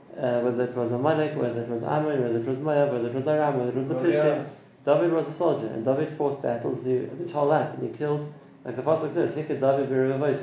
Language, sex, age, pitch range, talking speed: English, male, 30-49, 125-150 Hz, 260 wpm